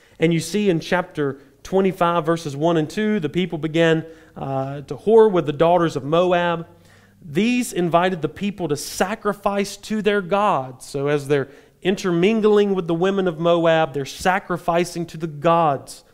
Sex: male